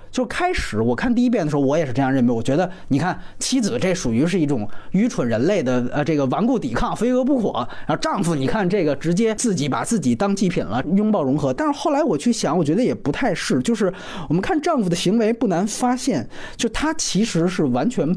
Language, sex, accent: Chinese, male, native